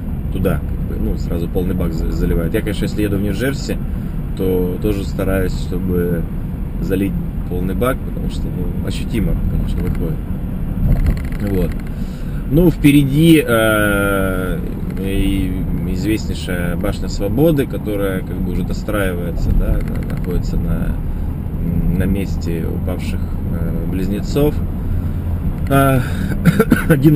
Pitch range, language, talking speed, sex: 85-110 Hz, Russian, 105 wpm, male